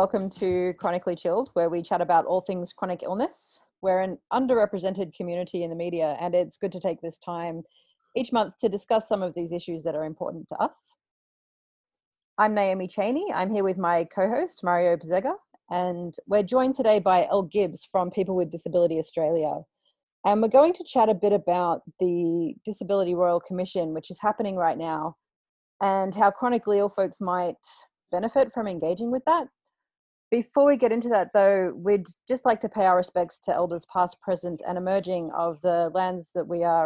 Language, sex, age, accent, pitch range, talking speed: English, female, 30-49, Australian, 175-210 Hz, 185 wpm